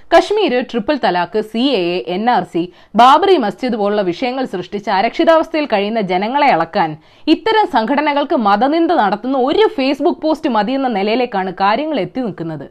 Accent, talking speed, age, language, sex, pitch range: native, 135 wpm, 20-39, Malayalam, female, 215-345 Hz